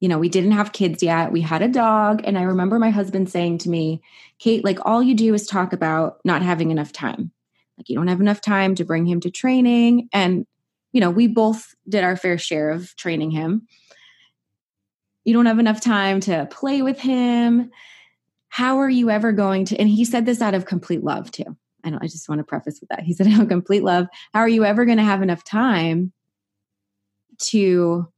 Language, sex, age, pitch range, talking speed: English, female, 20-39, 165-210 Hz, 220 wpm